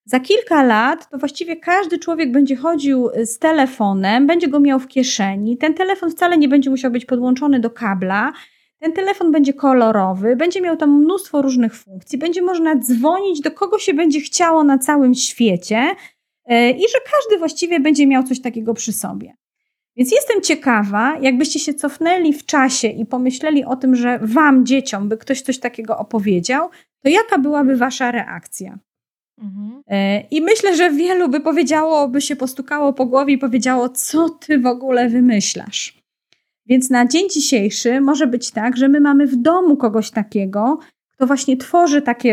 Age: 30-49